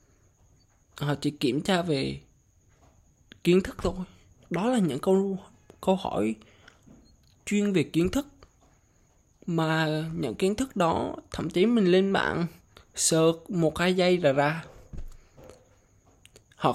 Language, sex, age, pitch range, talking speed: Vietnamese, male, 20-39, 125-180 Hz, 130 wpm